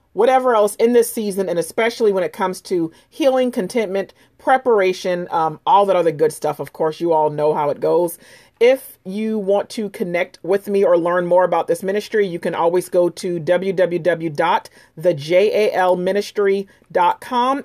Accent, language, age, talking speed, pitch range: American, English, 40-59, 160 wpm, 175-240 Hz